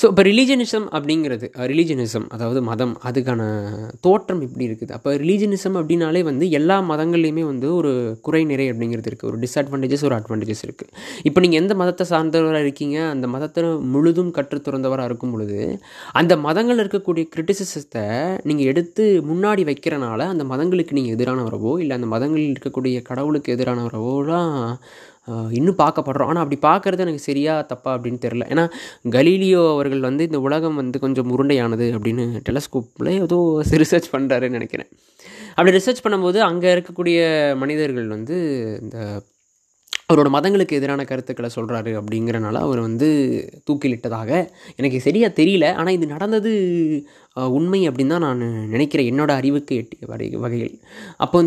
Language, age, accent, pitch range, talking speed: English, 20-39, Indian, 125-165 Hz, 120 wpm